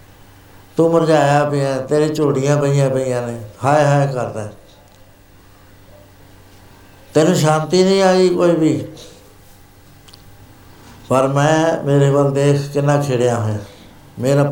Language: Punjabi